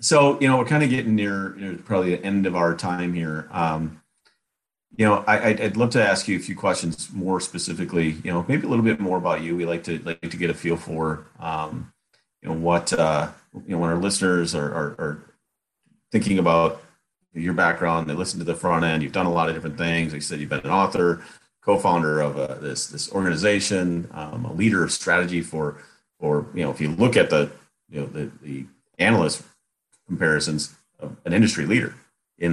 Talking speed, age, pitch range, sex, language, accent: 220 wpm, 40-59, 80-95 Hz, male, English, American